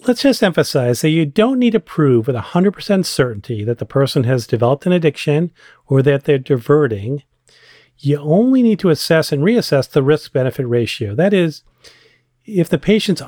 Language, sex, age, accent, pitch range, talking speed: English, male, 40-59, American, 125-170 Hz, 170 wpm